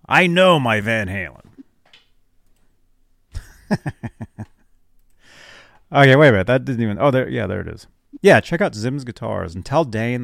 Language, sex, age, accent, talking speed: English, male, 30-49, American, 150 wpm